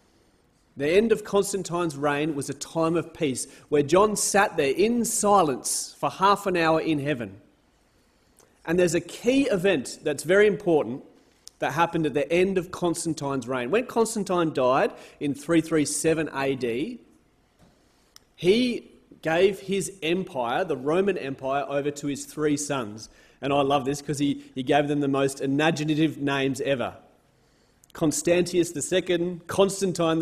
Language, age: English, 30-49